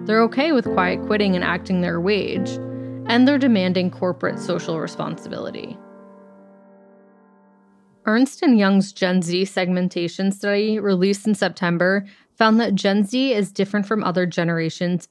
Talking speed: 135 wpm